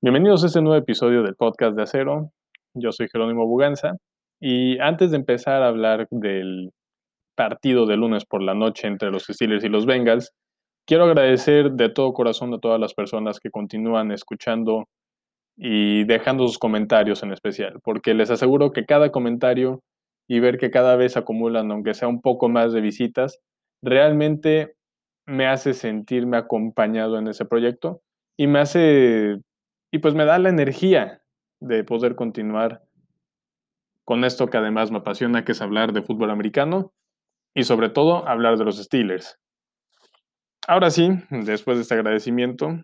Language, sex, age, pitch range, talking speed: Spanish, male, 20-39, 115-155 Hz, 160 wpm